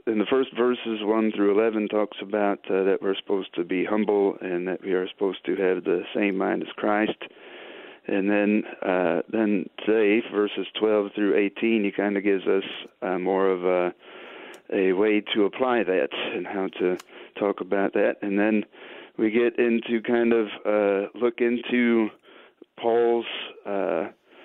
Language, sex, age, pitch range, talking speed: English, male, 40-59, 95-110 Hz, 170 wpm